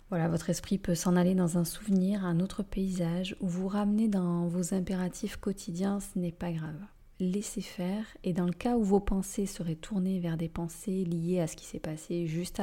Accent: French